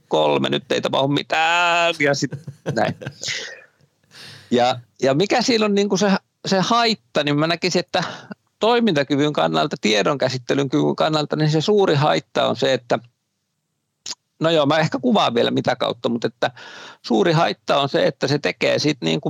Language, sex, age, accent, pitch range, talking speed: Finnish, male, 50-69, native, 120-165 Hz, 160 wpm